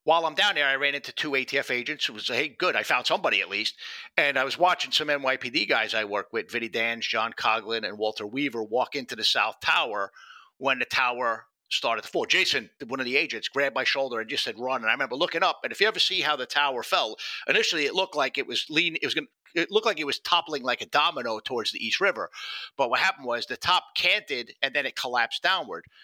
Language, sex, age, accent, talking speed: English, male, 50-69, American, 250 wpm